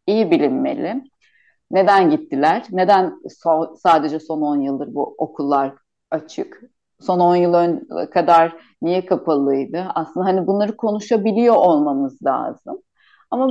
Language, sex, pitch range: Turkish, female, 165-230 Hz